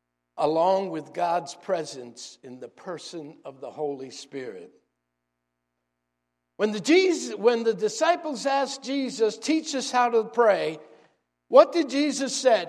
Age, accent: 60-79, American